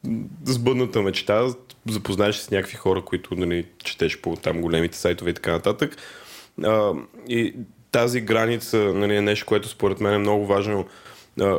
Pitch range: 95-115 Hz